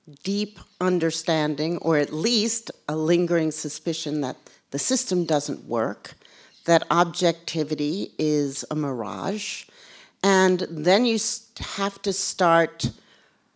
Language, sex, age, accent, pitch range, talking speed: English, female, 50-69, American, 150-190 Hz, 105 wpm